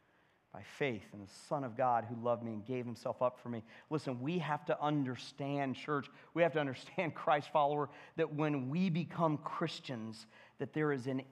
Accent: American